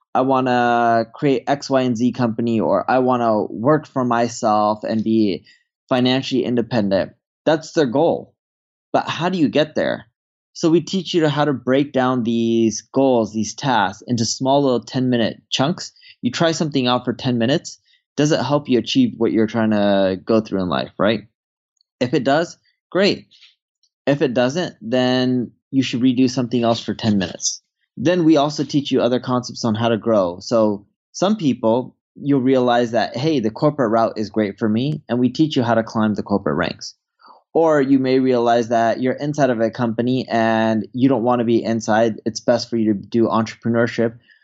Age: 20-39